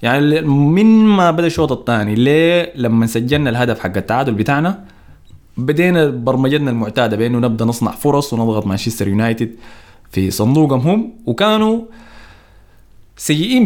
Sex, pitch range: male, 105-160 Hz